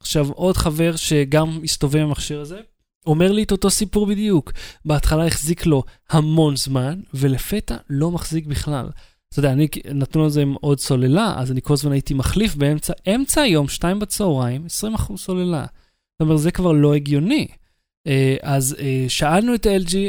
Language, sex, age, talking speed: Hebrew, male, 20-39, 165 wpm